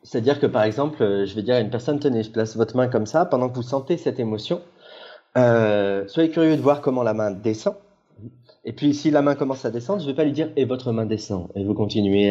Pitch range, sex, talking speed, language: 110-155 Hz, male, 275 wpm, French